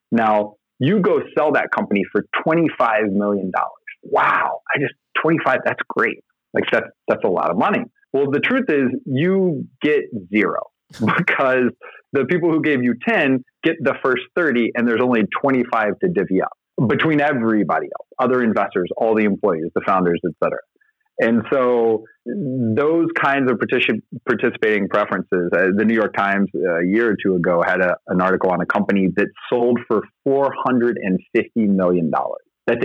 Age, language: 30-49, English